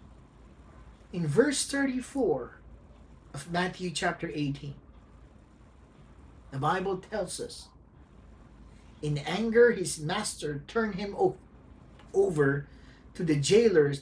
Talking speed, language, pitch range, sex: 90 wpm, English, 125-185 Hz, male